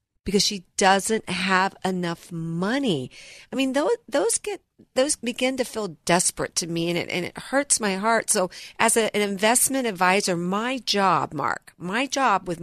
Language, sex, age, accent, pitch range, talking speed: English, female, 50-69, American, 160-210 Hz, 175 wpm